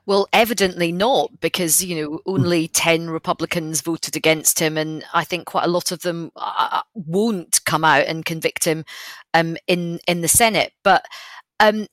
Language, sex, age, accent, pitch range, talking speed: English, female, 30-49, British, 165-195 Hz, 165 wpm